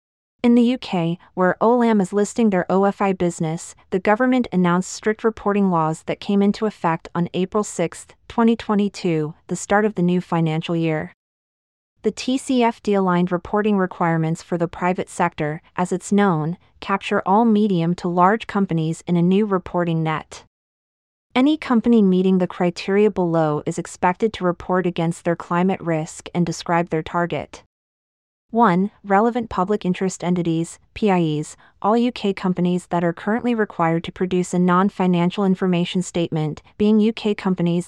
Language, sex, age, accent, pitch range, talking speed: English, female, 30-49, American, 170-205 Hz, 150 wpm